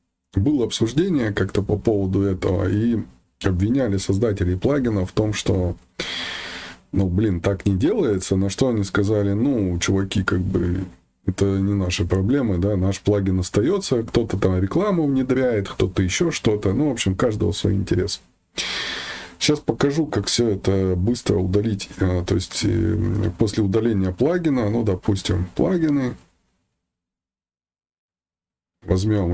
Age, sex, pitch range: 20-39, male, 90-110 Hz